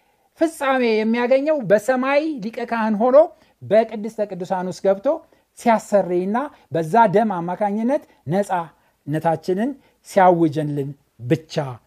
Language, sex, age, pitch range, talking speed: Amharic, male, 60-79, 165-240 Hz, 85 wpm